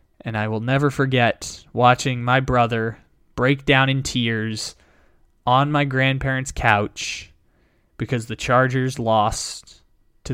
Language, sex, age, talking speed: English, male, 20-39, 120 wpm